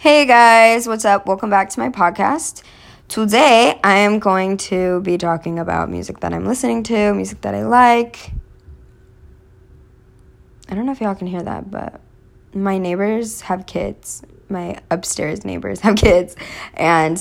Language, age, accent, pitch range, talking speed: English, 20-39, American, 170-225 Hz, 155 wpm